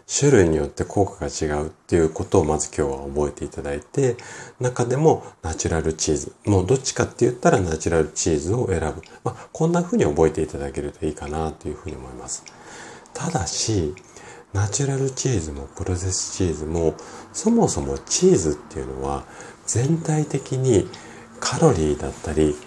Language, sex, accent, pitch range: Japanese, male, native, 75-115 Hz